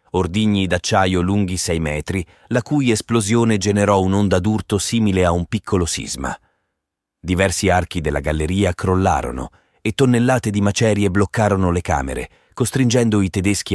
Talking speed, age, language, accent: 135 wpm, 30-49, Italian, native